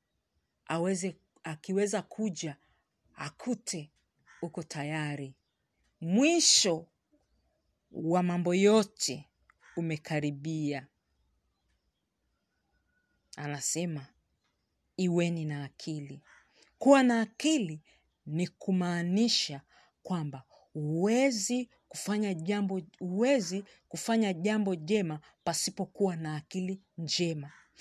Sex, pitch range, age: female, 155-215 Hz, 40-59